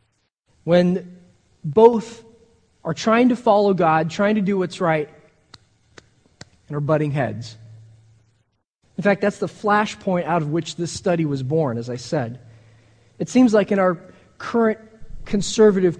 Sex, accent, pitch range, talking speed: male, American, 115-195 Hz, 145 wpm